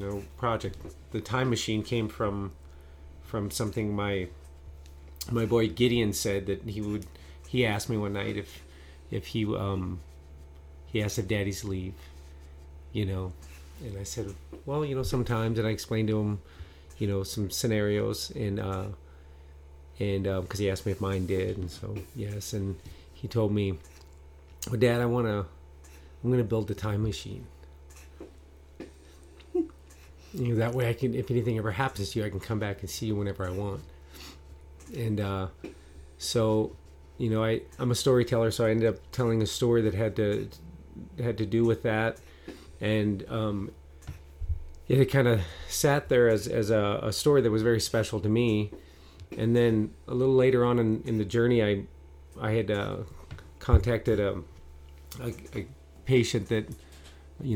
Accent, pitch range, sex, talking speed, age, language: American, 75-110 Hz, male, 170 wpm, 30-49, English